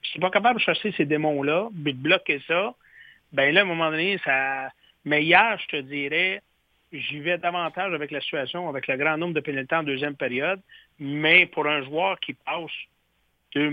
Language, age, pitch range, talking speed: French, 60-79, 150-185 Hz, 195 wpm